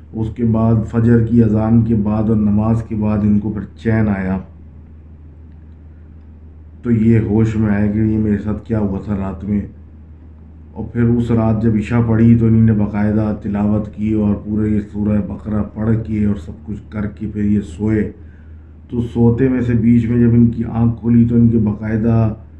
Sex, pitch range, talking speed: male, 80-110 Hz, 190 wpm